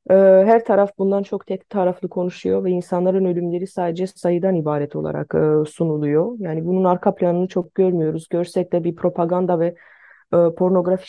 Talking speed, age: 145 wpm, 30-49